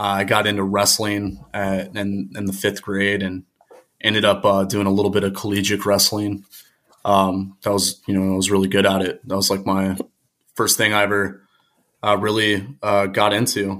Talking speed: 195 wpm